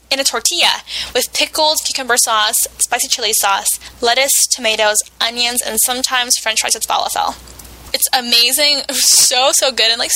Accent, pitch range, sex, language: American, 220-290 Hz, female, Italian